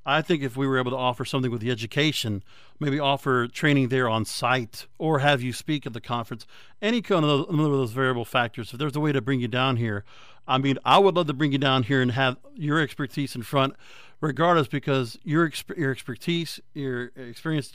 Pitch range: 130-165 Hz